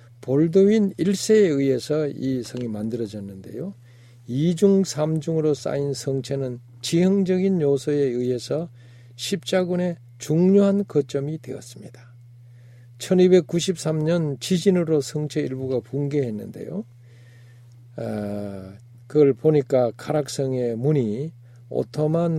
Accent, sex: native, male